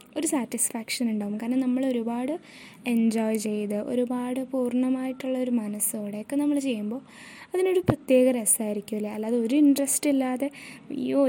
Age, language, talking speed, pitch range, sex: 20-39, Malayalam, 115 wpm, 235-285 Hz, female